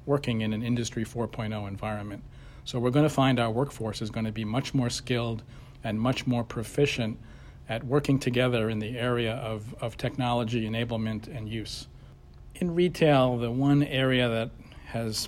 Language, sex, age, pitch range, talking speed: English, male, 50-69, 110-125 Hz, 160 wpm